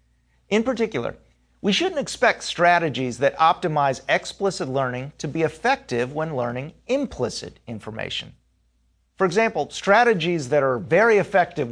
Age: 40-59